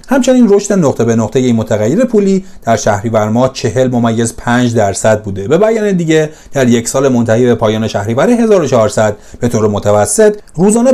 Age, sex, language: 40-59, male, Persian